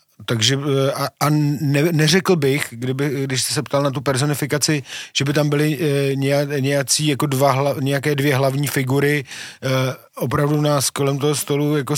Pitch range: 130-145 Hz